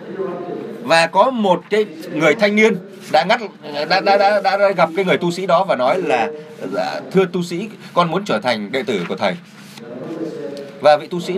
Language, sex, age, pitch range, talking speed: Vietnamese, male, 20-39, 170-220 Hz, 195 wpm